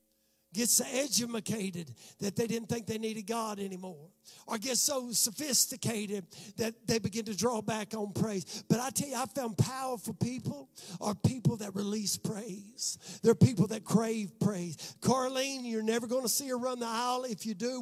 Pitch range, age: 190-250 Hz, 50-69